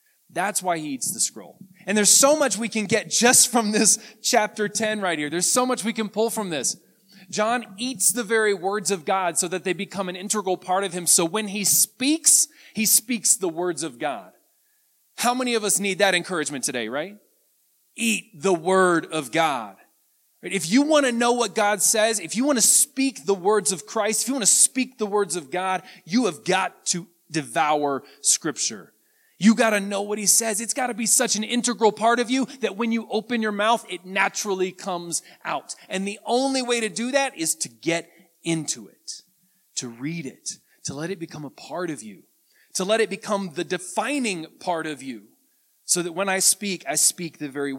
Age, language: 30-49, English